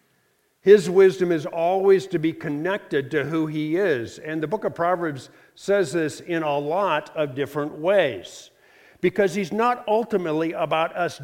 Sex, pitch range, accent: male, 165-225 Hz, American